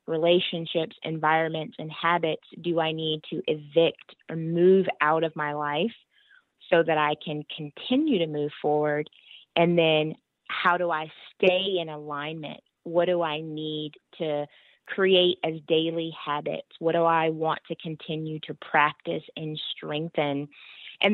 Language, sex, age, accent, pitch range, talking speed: English, female, 20-39, American, 155-180 Hz, 145 wpm